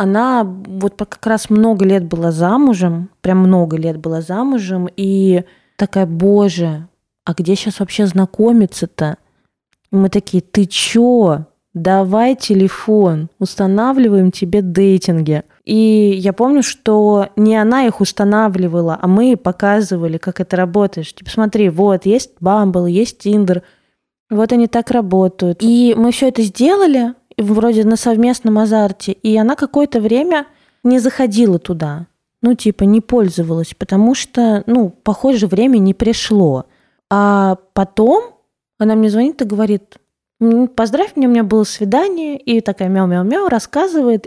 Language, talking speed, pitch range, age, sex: Russian, 135 wpm, 185-235 Hz, 20-39, female